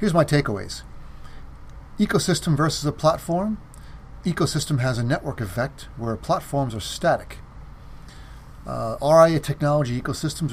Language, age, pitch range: English, 30-49, 115-150 Hz